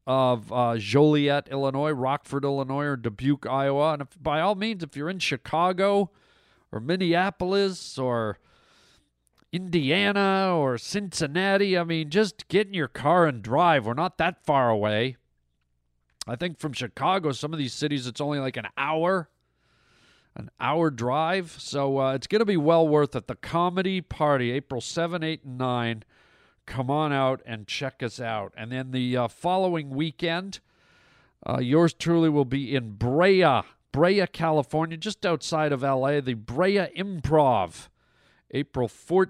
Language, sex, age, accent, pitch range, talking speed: English, male, 40-59, American, 125-170 Hz, 155 wpm